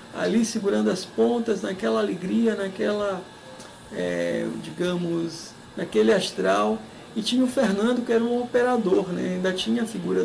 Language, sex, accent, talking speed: Portuguese, male, Brazilian, 135 wpm